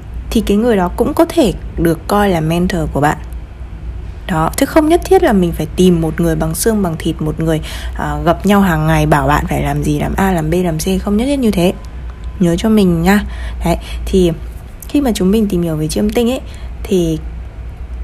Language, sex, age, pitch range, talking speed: Vietnamese, female, 20-39, 165-220 Hz, 225 wpm